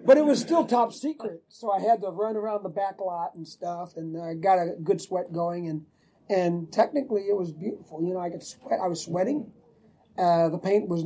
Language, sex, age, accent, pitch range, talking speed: English, male, 40-59, American, 170-210 Hz, 230 wpm